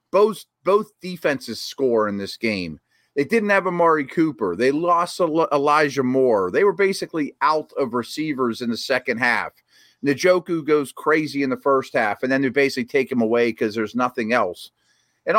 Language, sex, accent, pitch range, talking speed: English, male, American, 125-170 Hz, 175 wpm